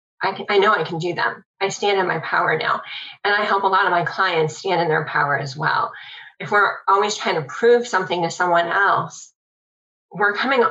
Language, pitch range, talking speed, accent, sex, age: English, 175-230 Hz, 220 wpm, American, female, 20-39